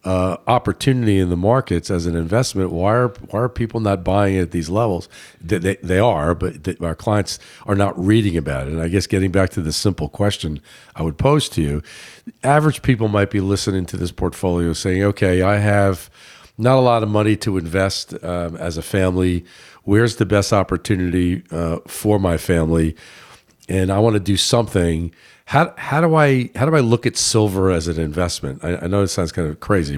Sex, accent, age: male, American, 50-69